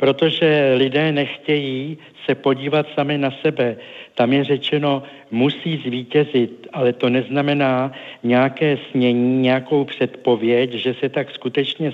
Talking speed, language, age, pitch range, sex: 120 wpm, Czech, 60-79, 120-140 Hz, male